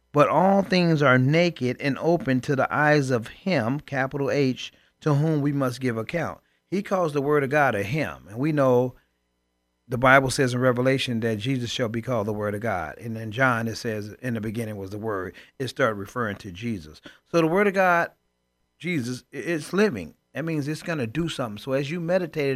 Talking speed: 215 wpm